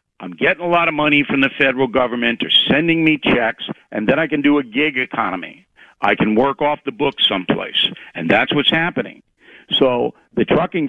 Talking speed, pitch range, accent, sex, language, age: 200 wpm, 130-155 Hz, American, male, English, 60-79